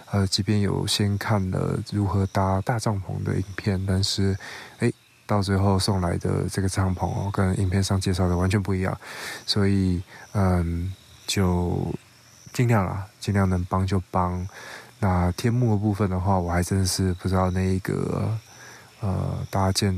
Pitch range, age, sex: 95-105 Hz, 20-39, male